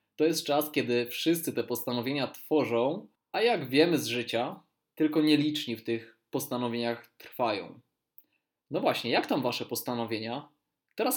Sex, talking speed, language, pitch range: male, 140 wpm, Polish, 115-145 Hz